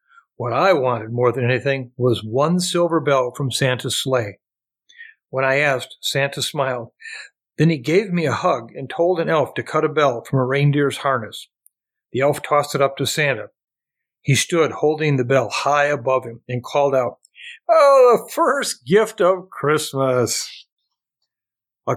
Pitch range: 130-150 Hz